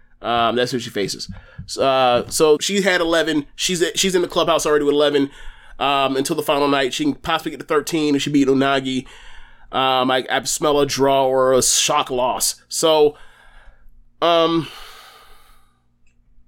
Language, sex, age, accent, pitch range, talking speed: English, male, 30-49, American, 120-155 Hz, 170 wpm